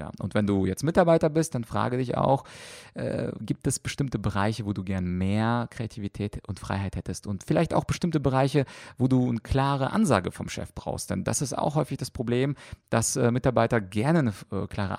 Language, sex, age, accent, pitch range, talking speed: German, male, 30-49, German, 100-125 Hz, 205 wpm